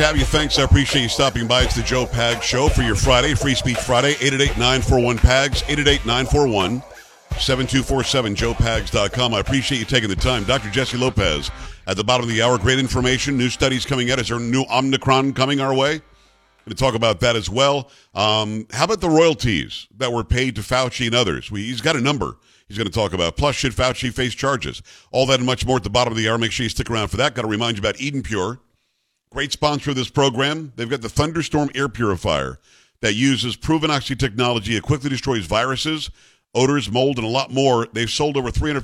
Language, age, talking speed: English, 50-69, 225 wpm